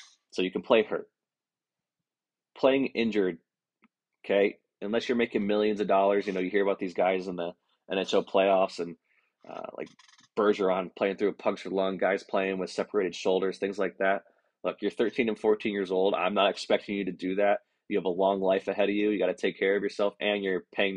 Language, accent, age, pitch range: English, American, 20-39, 95-105 Hz